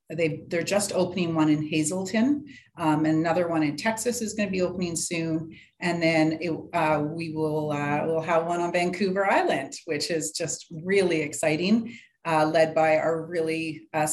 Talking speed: 180 wpm